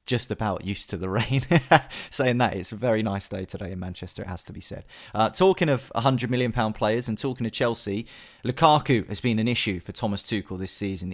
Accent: British